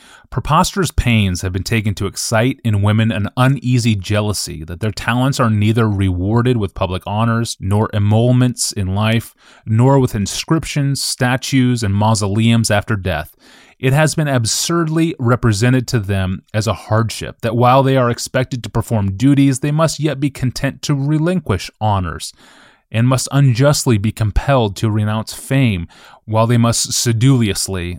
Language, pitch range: English, 105-130 Hz